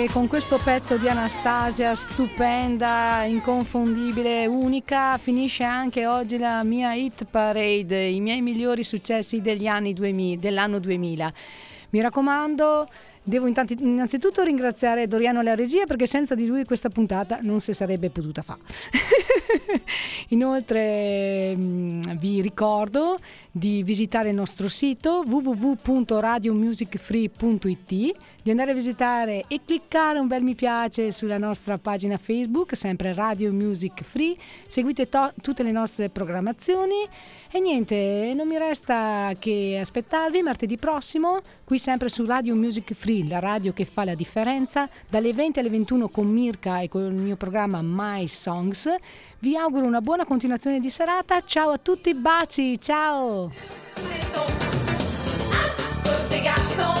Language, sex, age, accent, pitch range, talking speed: Italian, female, 30-49, native, 205-265 Hz, 130 wpm